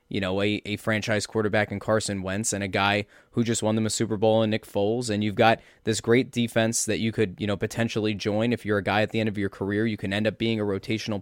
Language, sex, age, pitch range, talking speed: English, male, 20-39, 105-125 Hz, 280 wpm